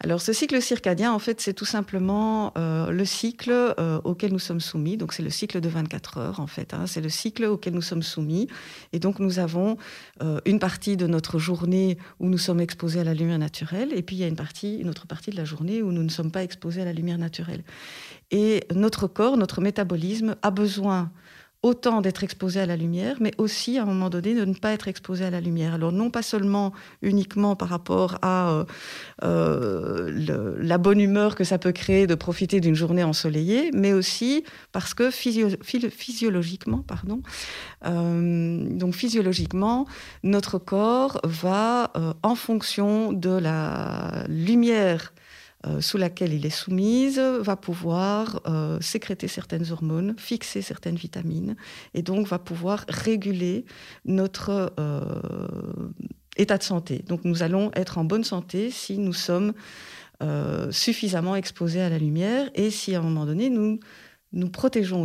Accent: French